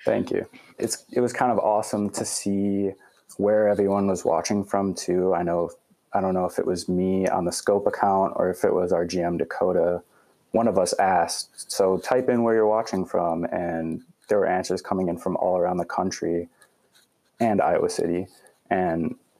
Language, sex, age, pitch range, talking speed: English, male, 20-39, 85-105 Hz, 190 wpm